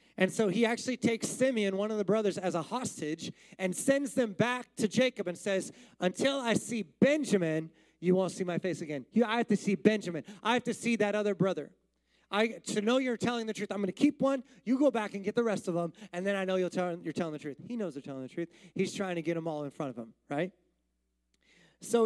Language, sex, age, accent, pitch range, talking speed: English, male, 30-49, American, 170-220 Hz, 240 wpm